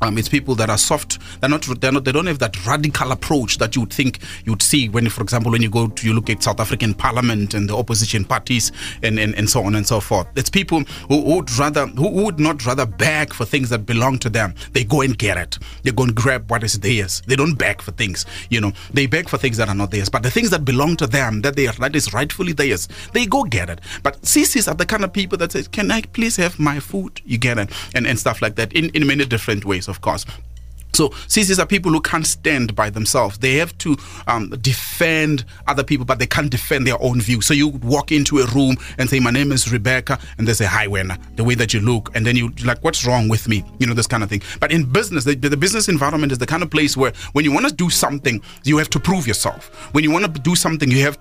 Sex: male